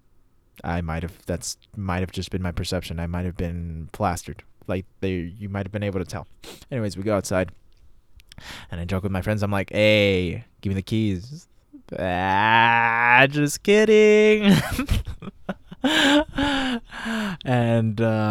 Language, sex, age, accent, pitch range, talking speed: English, male, 20-39, American, 100-145 Hz, 150 wpm